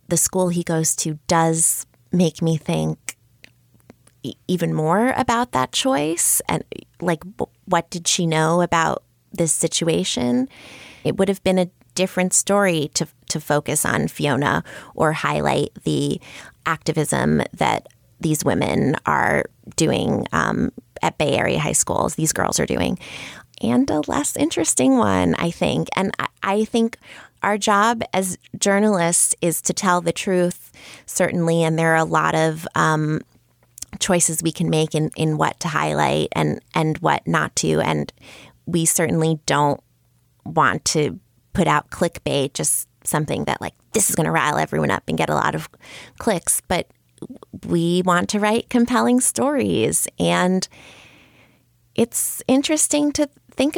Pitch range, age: 150-195 Hz, 20-39